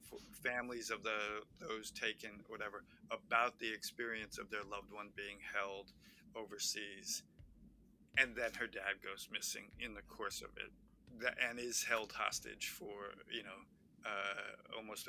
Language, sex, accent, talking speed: English, male, American, 145 wpm